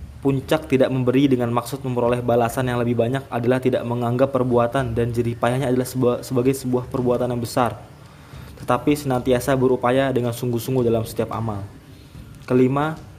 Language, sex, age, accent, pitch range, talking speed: Indonesian, male, 20-39, native, 115-135 Hz, 140 wpm